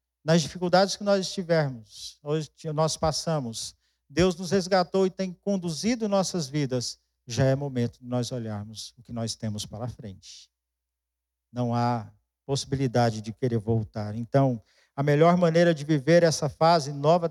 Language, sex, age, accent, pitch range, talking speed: Portuguese, male, 50-69, Brazilian, 120-170 Hz, 155 wpm